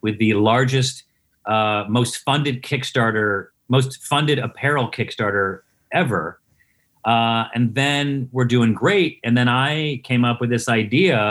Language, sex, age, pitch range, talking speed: English, male, 40-59, 110-130 Hz, 140 wpm